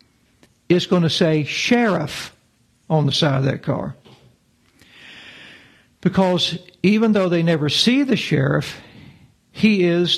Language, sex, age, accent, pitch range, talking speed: English, male, 60-79, American, 140-180 Hz, 125 wpm